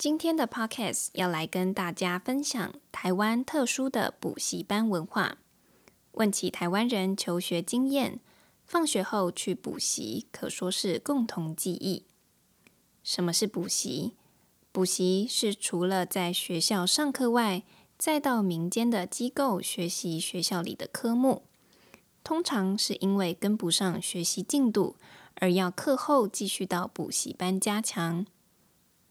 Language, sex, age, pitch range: English, female, 20-39, 180-240 Hz